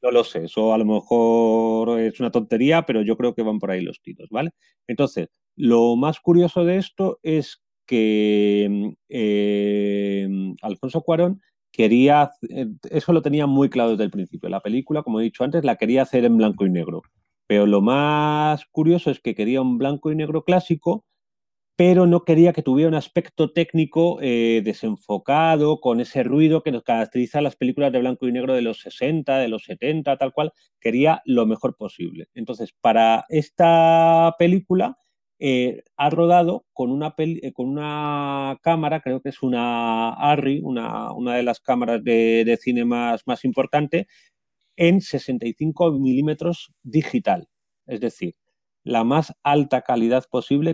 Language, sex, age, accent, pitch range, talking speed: Spanish, male, 30-49, Spanish, 115-160 Hz, 160 wpm